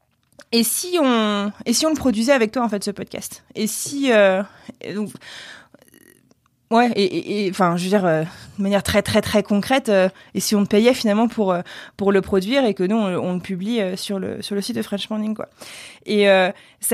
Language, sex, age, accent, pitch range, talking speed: French, female, 20-39, French, 180-220 Hz, 225 wpm